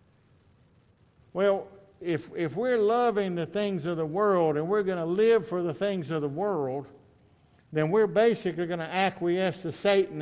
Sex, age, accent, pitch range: male, 60-79, American, 155-205 Hz